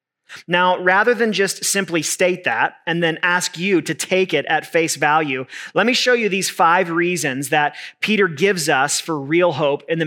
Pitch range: 155-205 Hz